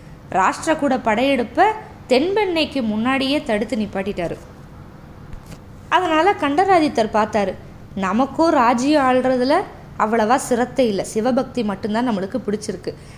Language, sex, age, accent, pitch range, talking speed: Tamil, female, 20-39, native, 210-295 Hz, 95 wpm